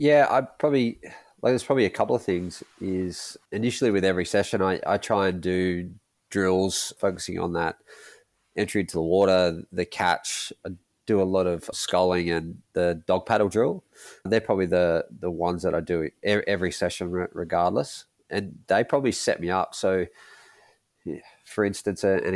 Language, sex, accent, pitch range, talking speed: English, male, Australian, 85-100 Hz, 165 wpm